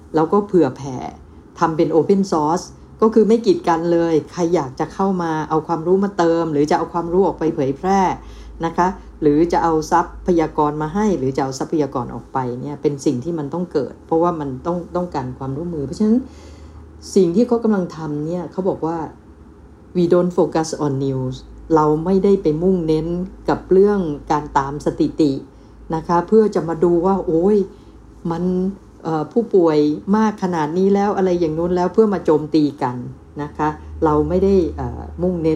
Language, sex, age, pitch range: Thai, female, 60-79, 140-180 Hz